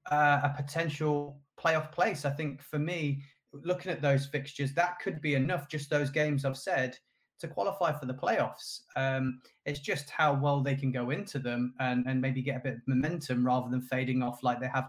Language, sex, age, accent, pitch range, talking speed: English, male, 20-39, British, 135-160 Hz, 210 wpm